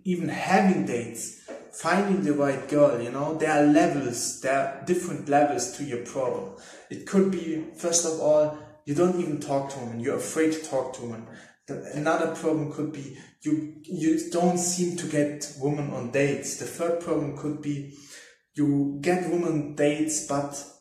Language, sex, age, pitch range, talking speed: English, male, 20-39, 140-160 Hz, 175 wpm